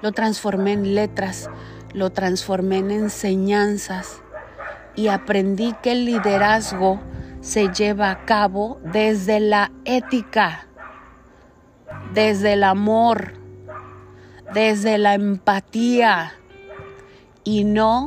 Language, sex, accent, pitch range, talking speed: Spanish, female, Venezuelan, 190-230 Hz, 95 wpm